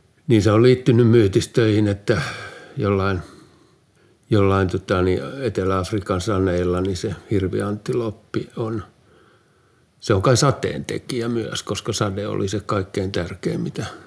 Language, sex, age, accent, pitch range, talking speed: Finnish, male, 60-79, native, 100-120 Hz, 120 wpm